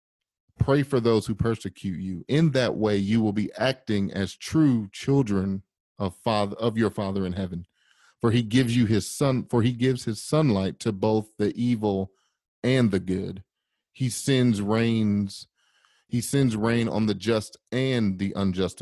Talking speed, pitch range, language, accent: 170 wpm, 100-120 Hz, English, American